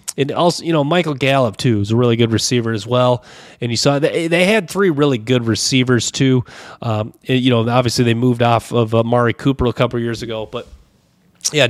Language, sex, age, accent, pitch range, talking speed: English, male, 30-49, American, 115-140 Hz, 225 wpm